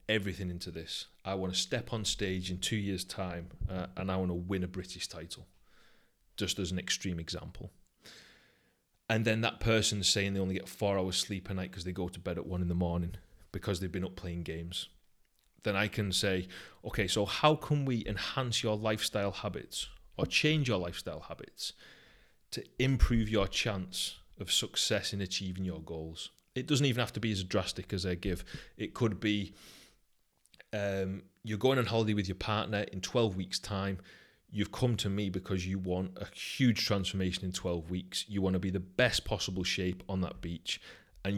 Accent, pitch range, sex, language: British, 90-105 Hz, male, English